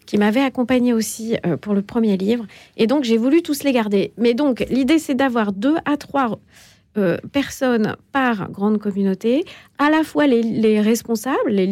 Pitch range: 210-275 Hz